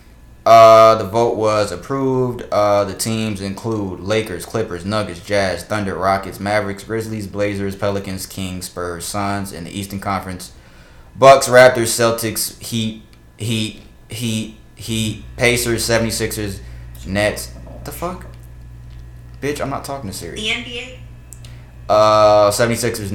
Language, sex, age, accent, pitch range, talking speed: English, male, 20-39, American, 85-115 Hz, 125 wpm